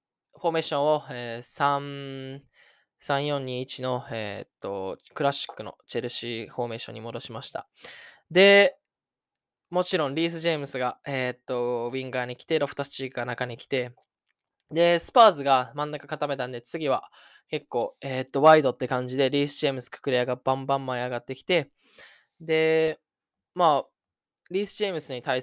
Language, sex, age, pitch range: Japanese, male, 10-29, 120-150 Hz